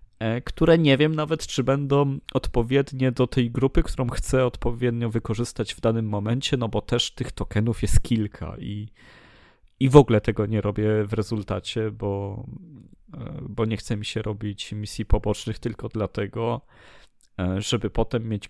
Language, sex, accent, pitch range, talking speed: Polish, male, native, 105-125 Hz, 150 wpm